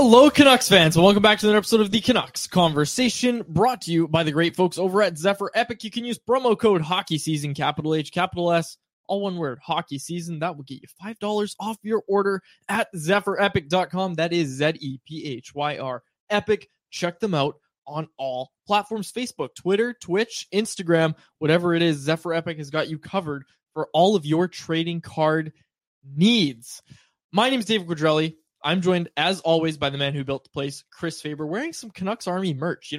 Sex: male